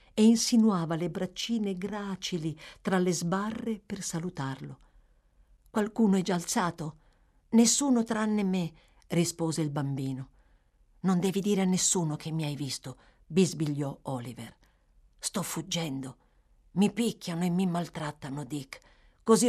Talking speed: 125 wpm